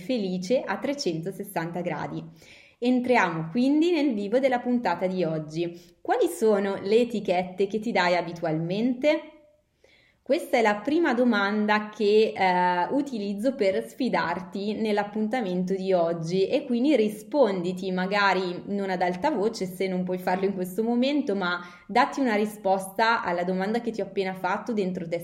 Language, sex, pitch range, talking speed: Italian, female, 180-225 Hz, 145 wpm